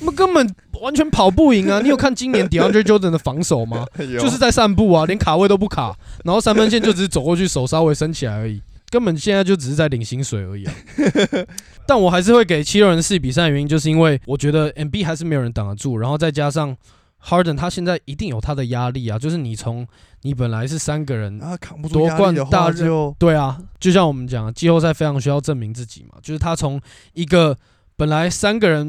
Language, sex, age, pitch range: Chinese, male, 20-39, 120-170 Hz